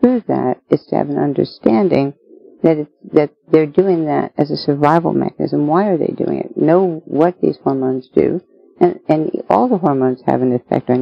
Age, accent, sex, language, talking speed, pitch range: 50-69, American, female, English, 190 wpm, 130-170 Hz